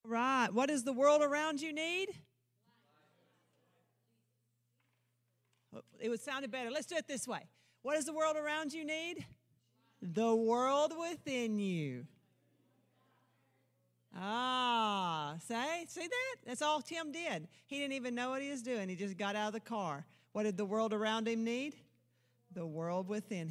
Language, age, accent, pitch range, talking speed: English, 50-69, American, 185-275 Hz, 155 wpm